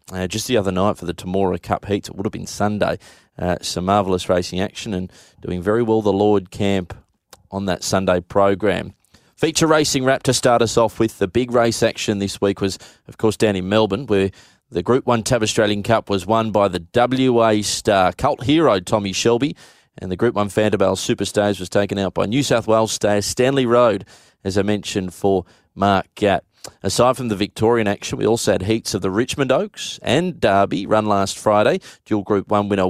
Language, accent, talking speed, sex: English, Australian, 205 wpm, male